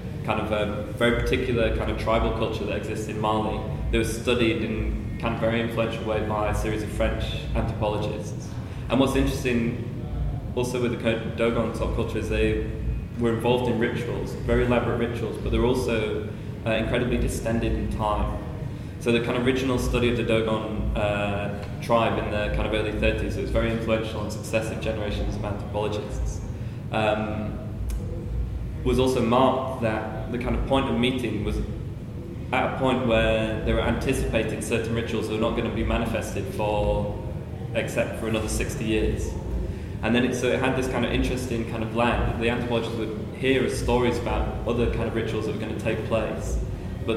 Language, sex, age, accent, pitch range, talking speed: English, male, 20-39, British, 105-120 Hz, 190 wpm